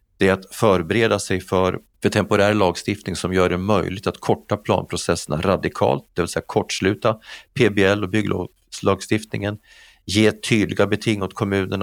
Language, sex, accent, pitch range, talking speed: Swedish, male, native, 90-105 Hz, 145 wpm